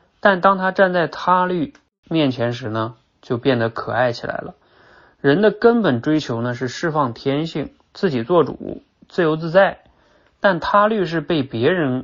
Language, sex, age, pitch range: Chinese, male, 20-39, 120-175 Hz